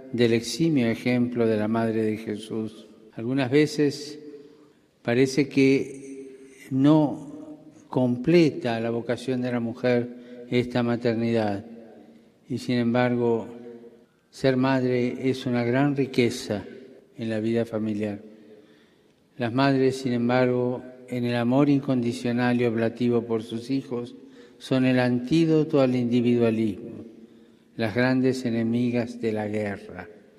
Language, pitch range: Spanish, 115-130 Hz